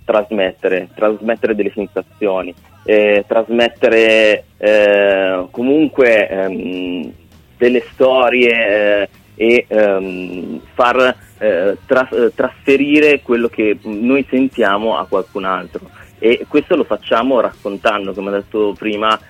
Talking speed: 105 wpm